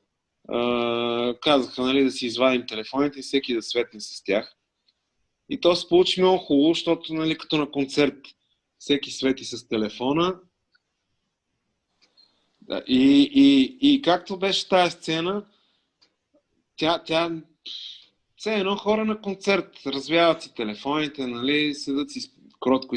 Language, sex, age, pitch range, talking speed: Bulgarian, male, 30-49, 120-160 Hz, 135 wpm